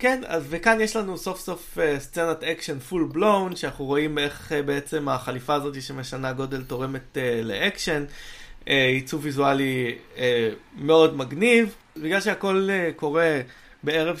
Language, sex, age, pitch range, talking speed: Hebrew, male, 20-39, 135-165 Hz, 145 wpm